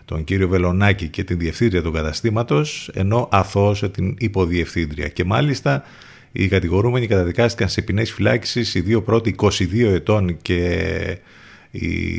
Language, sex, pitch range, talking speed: Greek, male, 85-110 Hz, 135 wpm